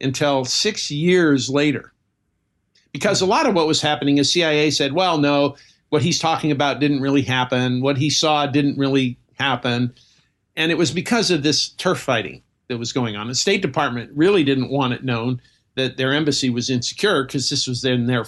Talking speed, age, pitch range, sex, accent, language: 195 wpm, 50-69, 125-150 Hz, male, American, English